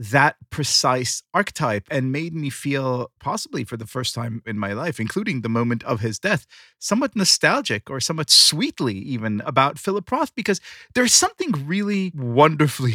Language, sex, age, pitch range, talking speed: English, male, 30-49, 120-180 Hz, 160 wpm